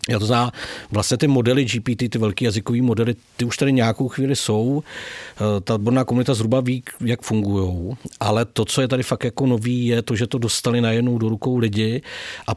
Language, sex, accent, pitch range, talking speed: Czech, male, native, 110-135 Hz, 200 wpm